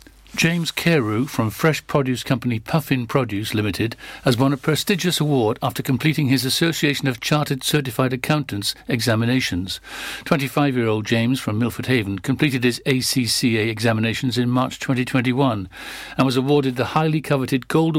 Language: English